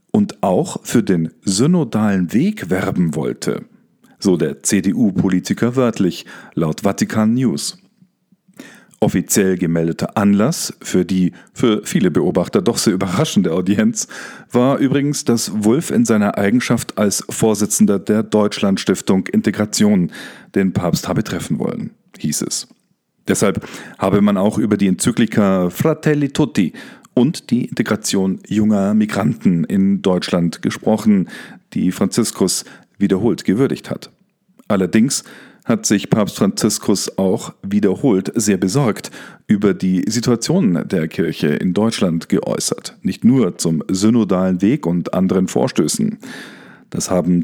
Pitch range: 95-130 Hz